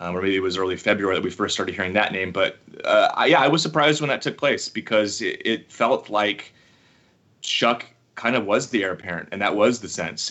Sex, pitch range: male, 95-105 Hz